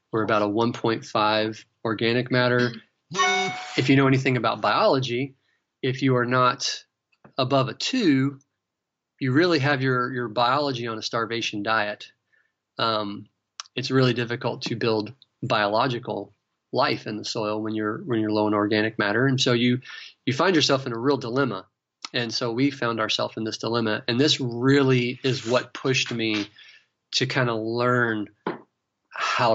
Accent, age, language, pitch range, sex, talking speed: American, 30-49, English, 110-130 Hz, male, 160 wpm